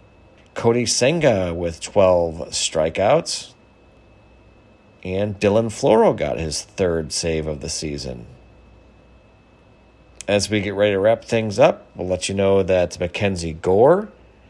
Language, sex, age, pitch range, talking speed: English, male, 40-59, 85-110 Hz, 125 wpm